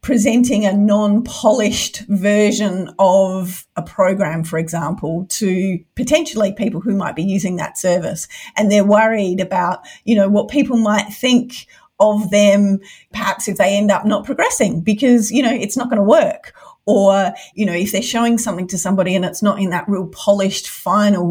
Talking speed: 175 wpm